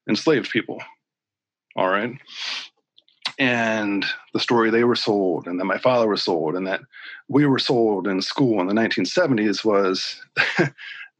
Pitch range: 100-125 Hz